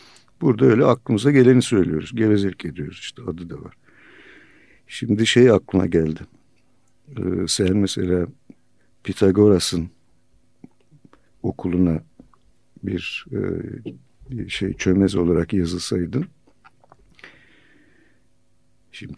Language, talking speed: Turkish, 85 wpm